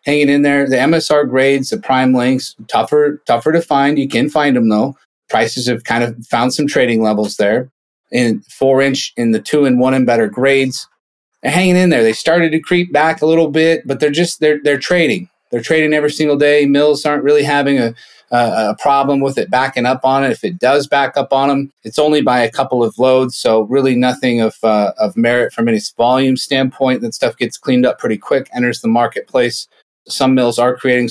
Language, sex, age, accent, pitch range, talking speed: English, male, 30-49, American, 115-145 Hz, 220 wpm